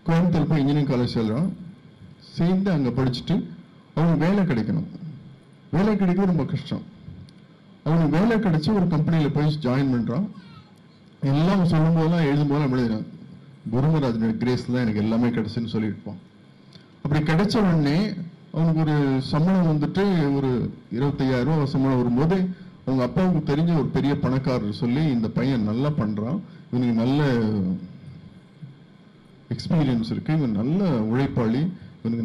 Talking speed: 120 wpm